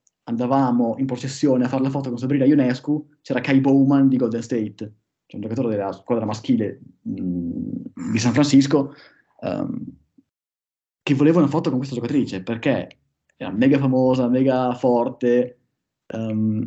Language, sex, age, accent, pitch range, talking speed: Italian, male, 20-39, native, 110-140 Hz, 145 wpm